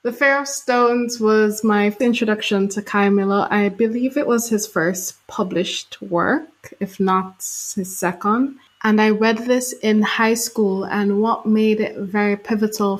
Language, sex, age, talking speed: English, female, 20-39, 160 wpm